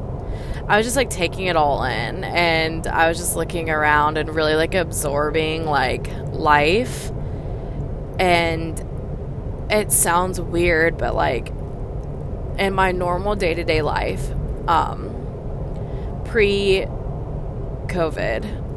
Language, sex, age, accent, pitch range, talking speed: English, female, 20-39, American, 135-170 Hz, 105 wpm